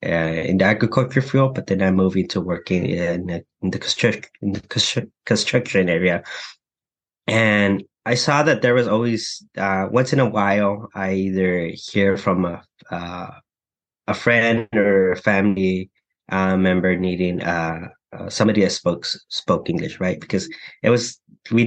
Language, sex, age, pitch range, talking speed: English, male, 20-39, 90-110 Hz, 165 wpm